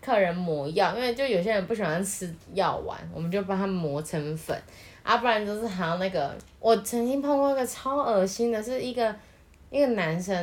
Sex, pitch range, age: female, 160-230 Hz, 20-39